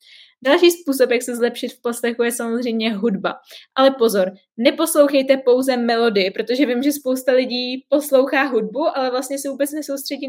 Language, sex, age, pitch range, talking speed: Czech, female, 20-39, 230-280 Hz, 160 wpm